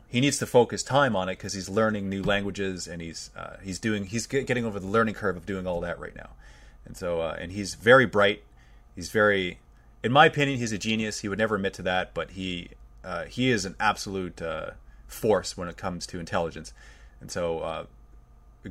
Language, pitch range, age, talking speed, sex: English, 85-110 Hz, 30-49, 215 wpm, male